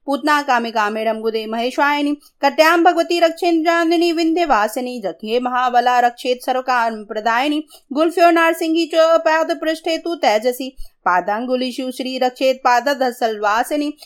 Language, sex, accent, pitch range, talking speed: Hindi, female, native, 250-320 Hz, 100 wpm